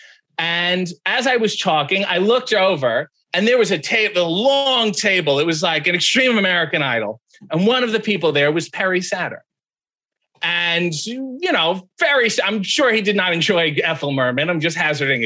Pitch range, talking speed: 170-225 Hz, 185 wpm